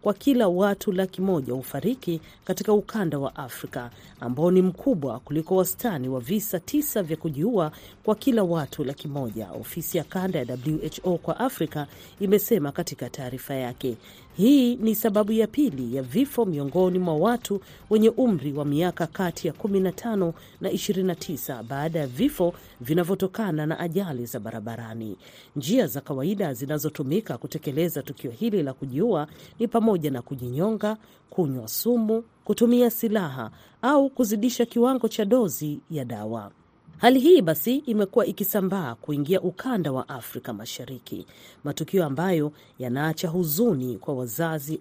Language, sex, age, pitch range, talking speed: Swahili, female, 40-59, 140-215 Hz, 140 wpm